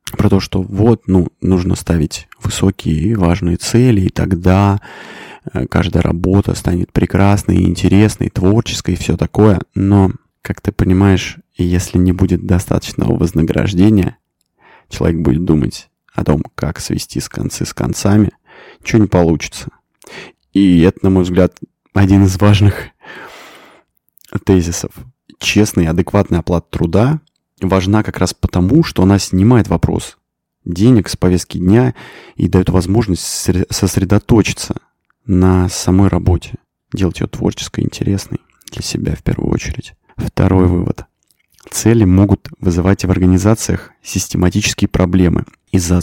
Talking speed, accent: 130 wpm, native